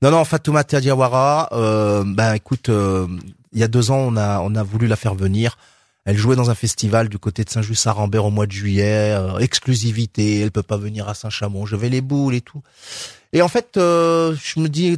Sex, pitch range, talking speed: male, 105-125 Hz, 230 wpm